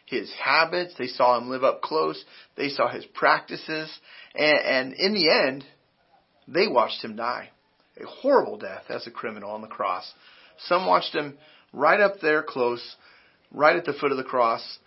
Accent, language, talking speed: American, English, 180 wpm